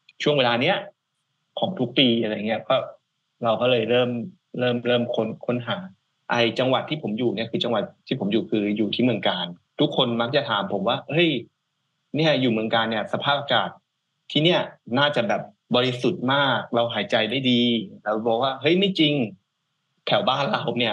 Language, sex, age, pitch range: Thai, male, 20-39, 115-150 Hz